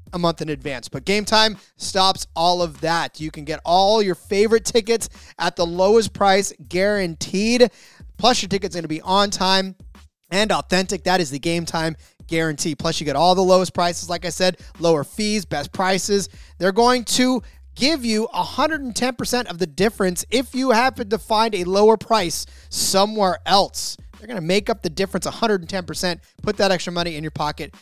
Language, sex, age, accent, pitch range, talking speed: English, male, 30-49, American, 165-210 Hz, 190 wpm